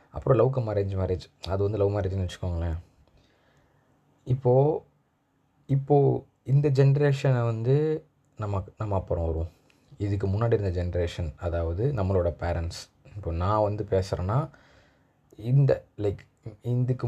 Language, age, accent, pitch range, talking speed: Tamil, 20-39, native, 90-125 Hz, 110 wpm